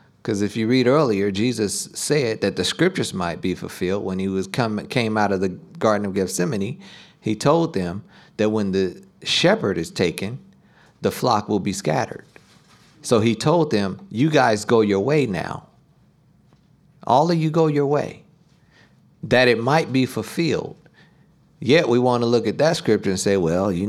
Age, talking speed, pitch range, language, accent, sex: 50-69, 180 wpm, 100-140 Hz, English, American, male